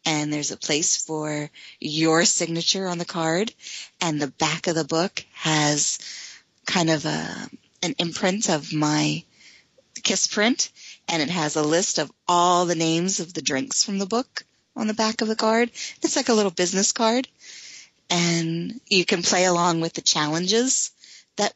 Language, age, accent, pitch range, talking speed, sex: English, 30-49, American, 155-200 Hz, 175 wpm, female